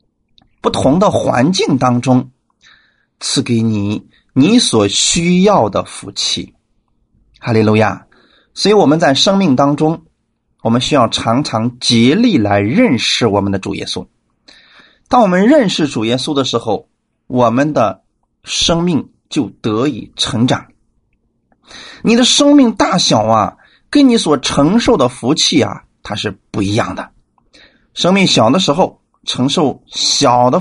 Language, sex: Chinese, male